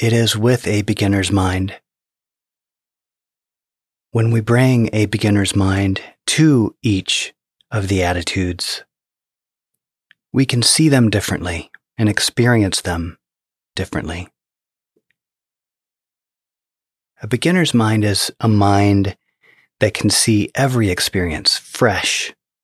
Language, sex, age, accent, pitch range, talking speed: English, male, 30-49, American, 95-115 Hz, 100 wpm